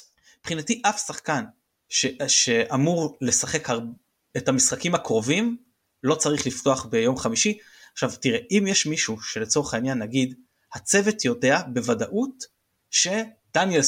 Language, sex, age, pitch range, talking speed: Hebrew, male, 30-49, 115-160 Hz, 110 wpm